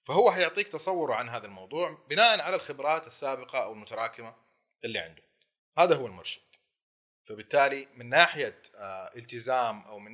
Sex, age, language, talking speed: male, 30-49, Arabic, 135 wpm